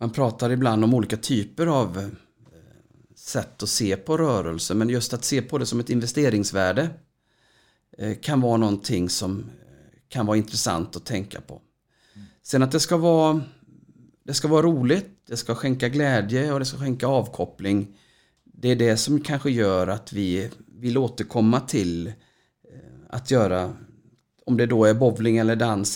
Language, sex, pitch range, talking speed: English, male, 105-135 Hz, 160 wpm